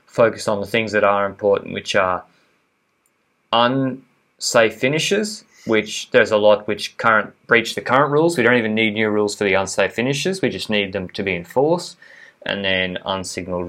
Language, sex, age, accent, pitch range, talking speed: English, male, 20-39, Australian, 95-115 Hz, 185 wpm